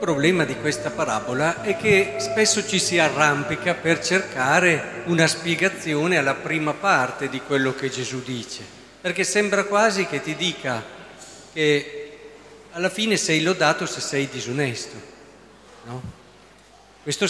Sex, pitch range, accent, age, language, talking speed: male, 135-185 Hz, native, 50-69, Italian, 135 wpm